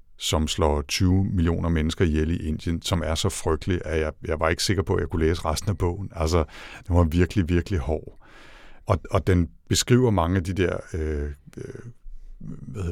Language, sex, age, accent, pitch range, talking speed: Danish, male, 60-79, native, 80-100 Hz, 195 wpm